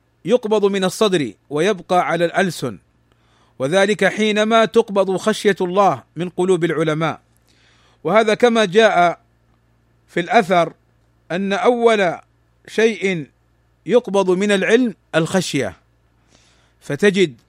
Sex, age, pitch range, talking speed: male, 40-59, 150-210 Hz, 95 wpm